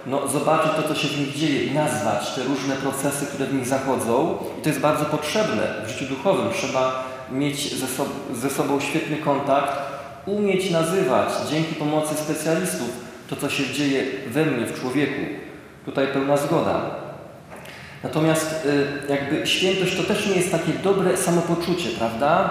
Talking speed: 150 wpm